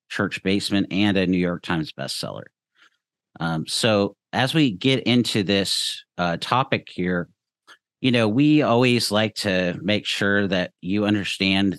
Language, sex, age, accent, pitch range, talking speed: English, male, 50-69, American, 90-115 Hz, 150 wpm